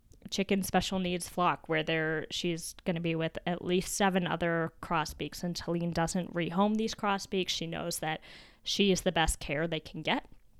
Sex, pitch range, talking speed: female, 160-190 Hz, 185 wpm